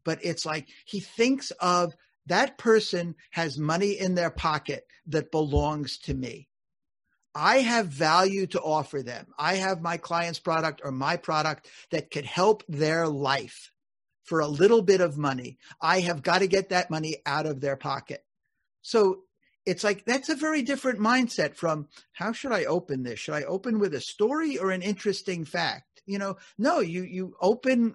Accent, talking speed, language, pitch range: American, 180 wpm, English, 150-200 Hz